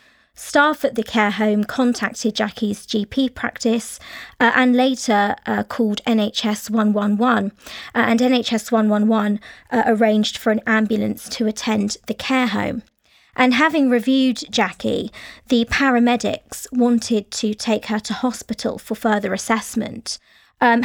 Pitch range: 215-240 Hz